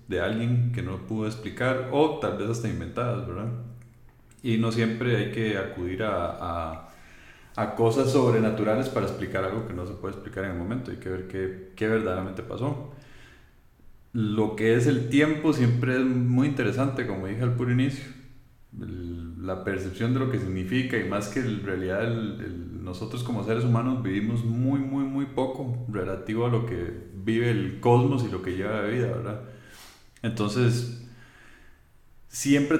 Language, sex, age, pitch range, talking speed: Spanish, male, 30-49, 105-125 Hz, 175 wpm